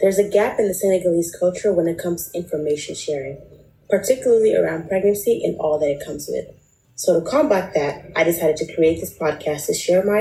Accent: American